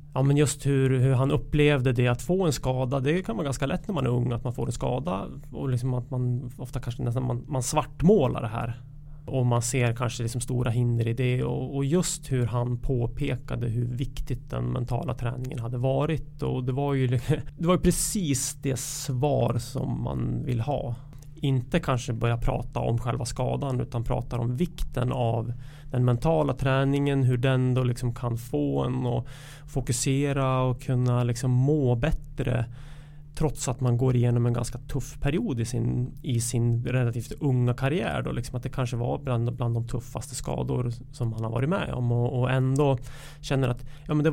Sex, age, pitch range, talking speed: male, 30-49, 120-145 Hz, 195 wpm